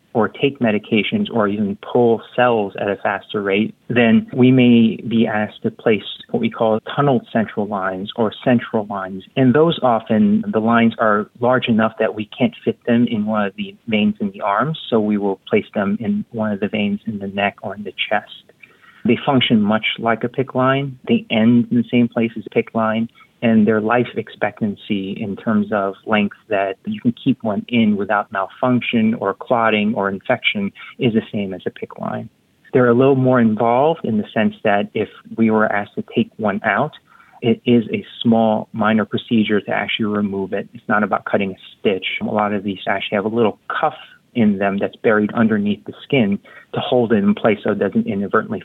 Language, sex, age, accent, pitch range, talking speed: English, male, 30-49, American, 105-130 Hz, 205 wpm